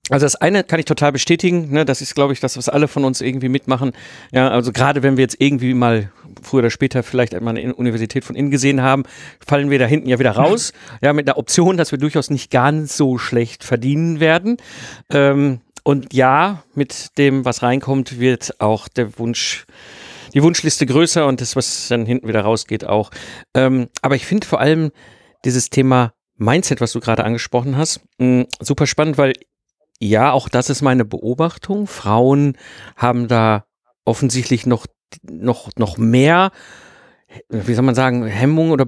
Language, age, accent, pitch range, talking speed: German, 50-69, German, 120-145 Hz, 175 wpm